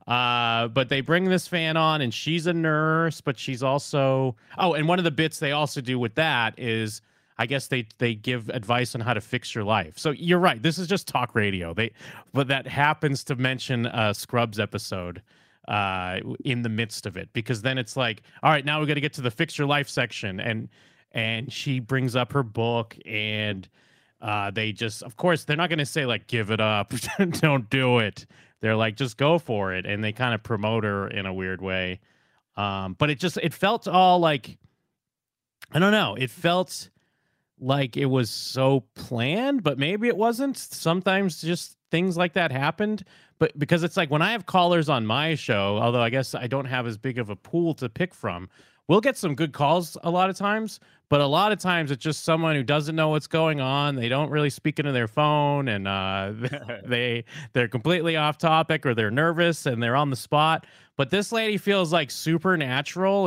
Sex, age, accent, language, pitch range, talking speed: male, 30-49, American, English, 115-160 Hz, 210 wpm